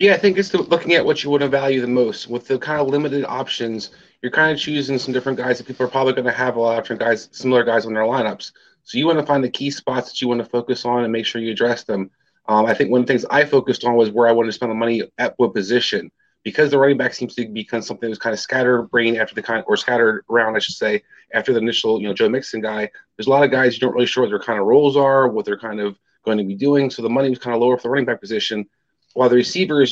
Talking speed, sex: 310 wpm, male